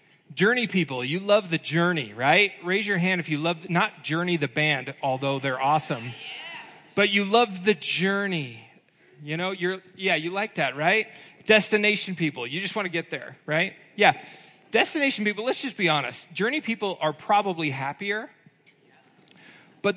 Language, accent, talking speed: English, American, 165 wpm